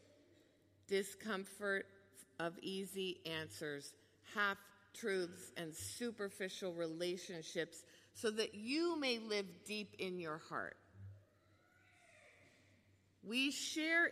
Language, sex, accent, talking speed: English, female, American, 80 wpm